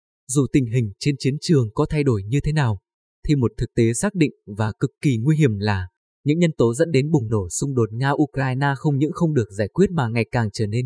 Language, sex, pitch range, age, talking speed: Vietnamese, male, 115-150 Hz, 20-39, 250 wpm